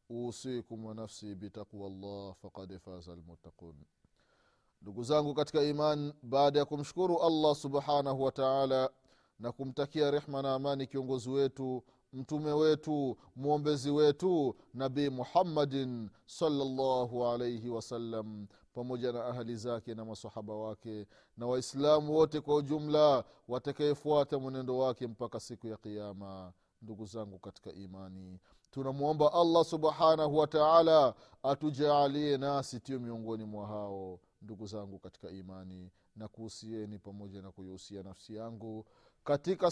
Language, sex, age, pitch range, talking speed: Swahili, male, 30-49, 110-145 Hz, 120 wpm